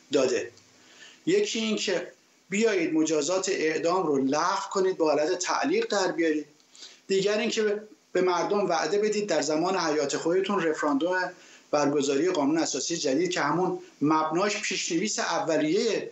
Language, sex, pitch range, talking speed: Persian, male, 170-245 Hz, 125 wpm